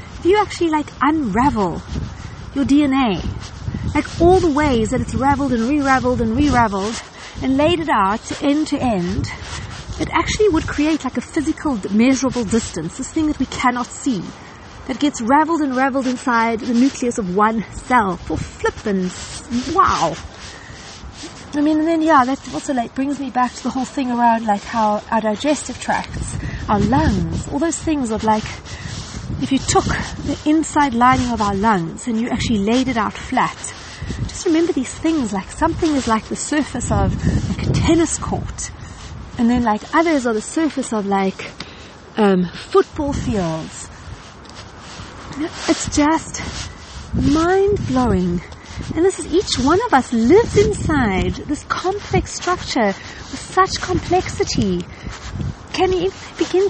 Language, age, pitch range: English, 40-59, 225-315 Hz